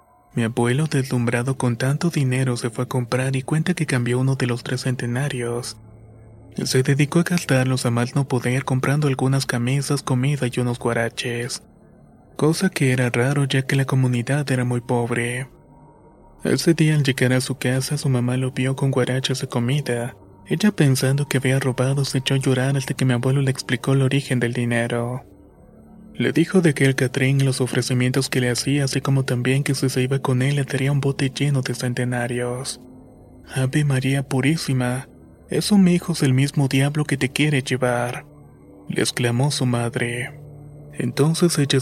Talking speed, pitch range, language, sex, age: 180 wpm, 125-140 Hz, Spanish, male, 20-39